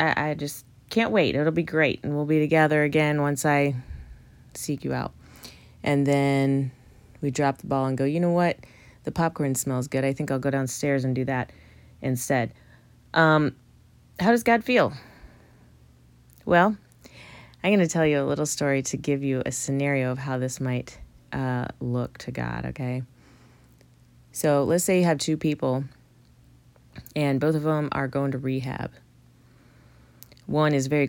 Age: 30-49